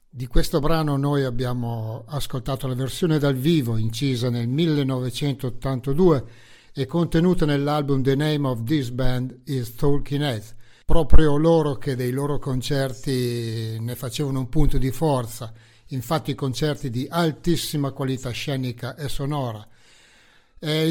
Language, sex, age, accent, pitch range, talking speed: English, male, 60-79, Italian, 125-150 Hz, 130 wpm